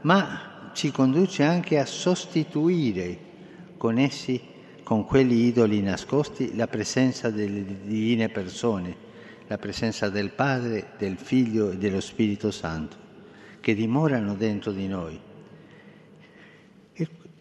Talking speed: 115 wpm